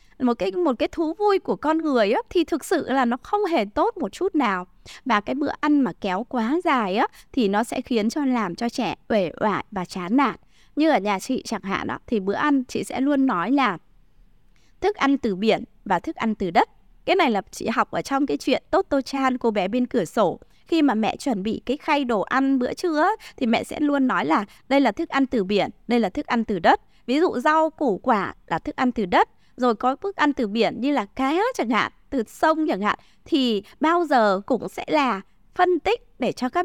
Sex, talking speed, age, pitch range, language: female, 240 wpm, 20-39, 220-315 Hz, Vietnamese